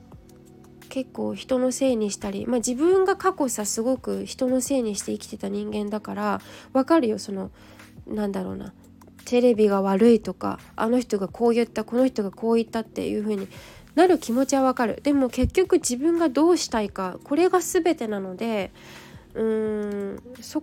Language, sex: Japanese, female